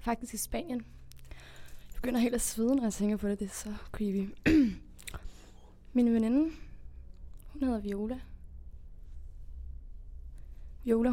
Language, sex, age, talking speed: Danish, female, 20-39, 125 wpm